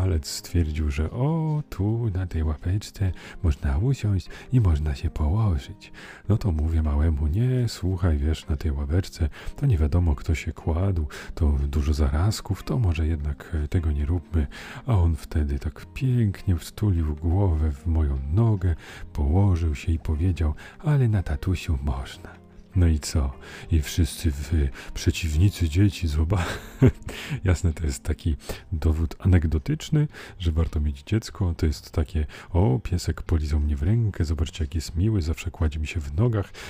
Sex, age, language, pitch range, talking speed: male, 40-59, Polish, 80-100 Hz, 155 wpm